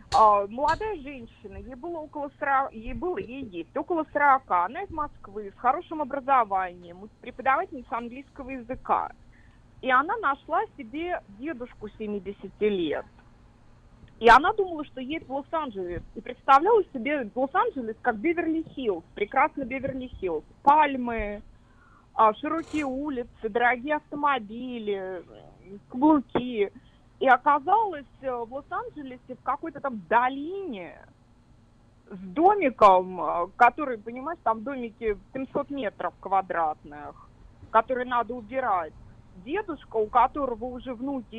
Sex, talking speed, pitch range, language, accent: female, 105 wpm, 210-295 Hz, Russian, native